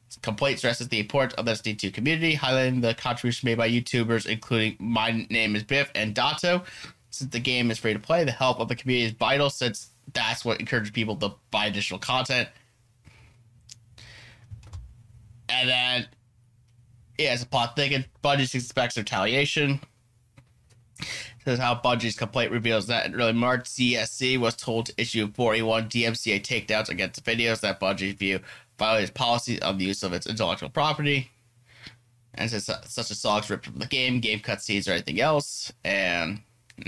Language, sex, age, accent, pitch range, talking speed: English, male, 20-39, American, 110-130 Hz, 165 wpm